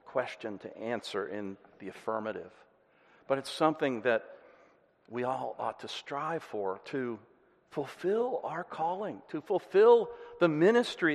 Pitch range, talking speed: 130-205 Hz, 130 wpm